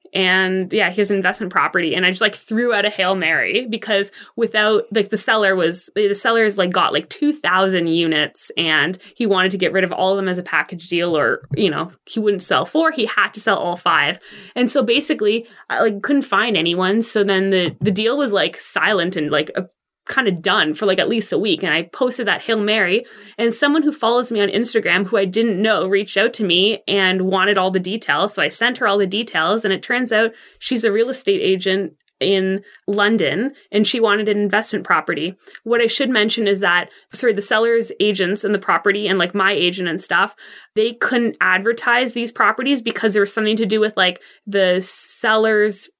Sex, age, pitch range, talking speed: female, 20-39, 190-225 Hz, 220 wpm